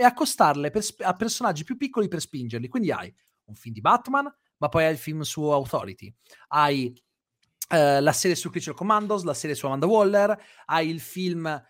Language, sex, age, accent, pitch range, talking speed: Italian, male, 30-49, native, 135-200 Hz, 185 wpm